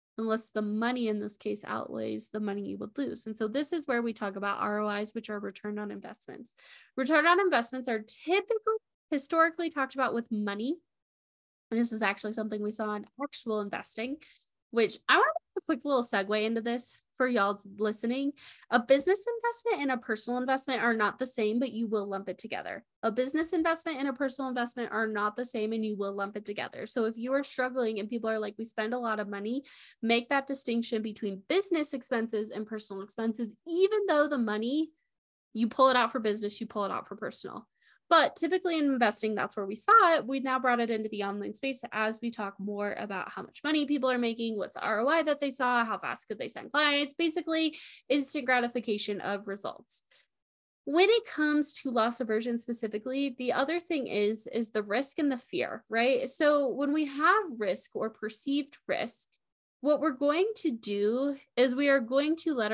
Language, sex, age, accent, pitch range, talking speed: English, female, 10-29, American, 215-285 Hz, 205 wpm